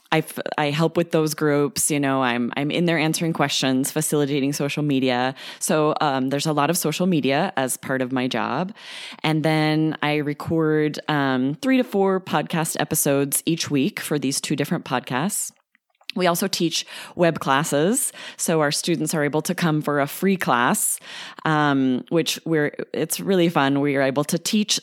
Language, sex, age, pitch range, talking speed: English, female, 20-39, 140-170 Hz, 180 wpm